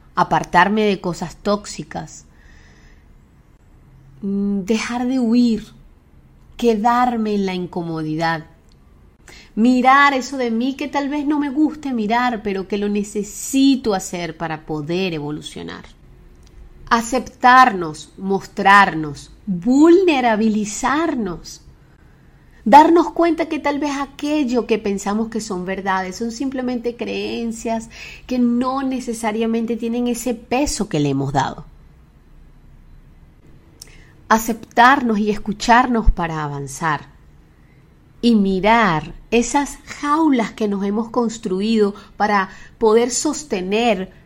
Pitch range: 170-245 Hz